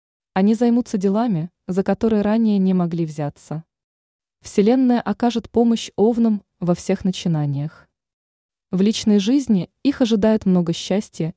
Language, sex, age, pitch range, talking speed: Russian, female, 20-39, 170-225 Hz, 120 wpm